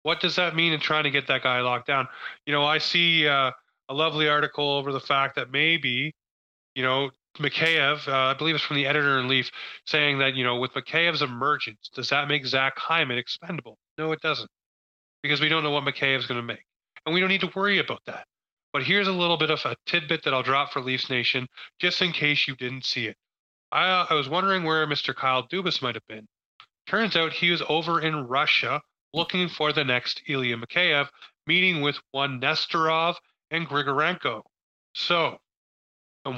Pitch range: 130-160 Hz